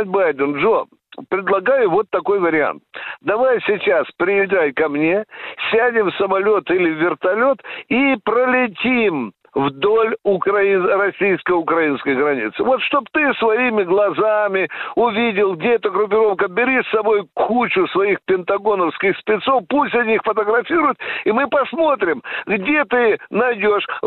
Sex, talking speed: male, 120 wpm